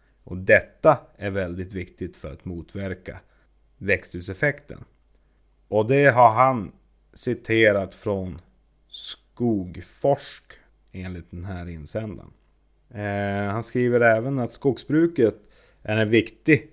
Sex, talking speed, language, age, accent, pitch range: male, 100 wpm, Swedish, 30-49, native, 95-120 Hz